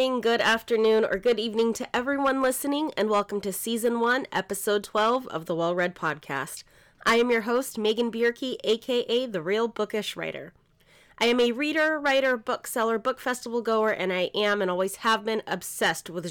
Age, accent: 30-49, American